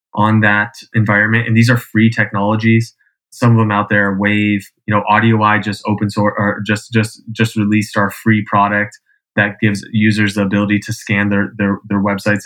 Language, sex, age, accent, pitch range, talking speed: English, male, 20-39, American, 105-115 Hz, 195 wpm